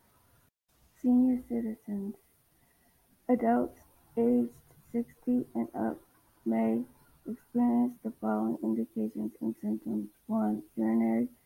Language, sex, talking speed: English, female, 85 wpm